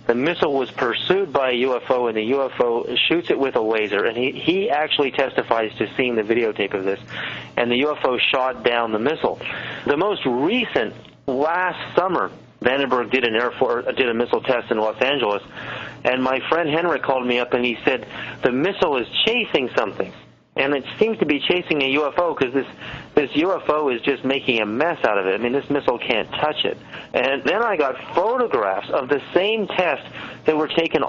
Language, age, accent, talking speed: English, 40-59, American, 200 wpm